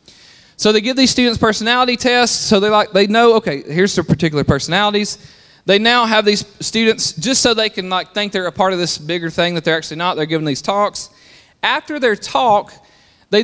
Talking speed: 205 wpm